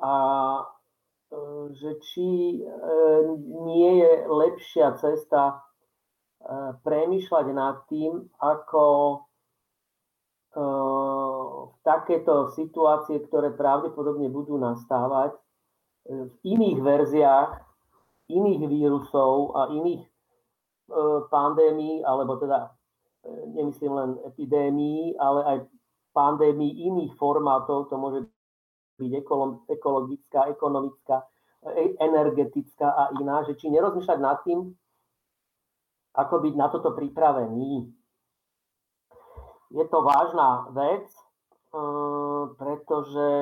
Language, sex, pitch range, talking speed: Slovak, male, 135-155 Hz, 90 wpm